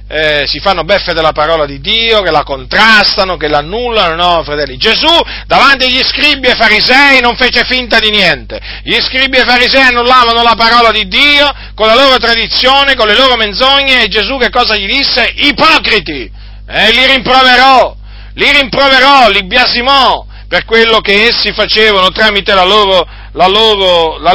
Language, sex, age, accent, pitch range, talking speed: Italian, male, 40-59, native, 145-235 Hz, 170 wpm